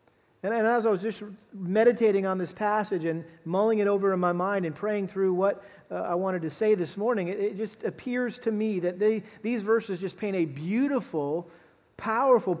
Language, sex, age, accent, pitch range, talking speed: English, male, 40-59, American, 185-225 Hz, 200 wpm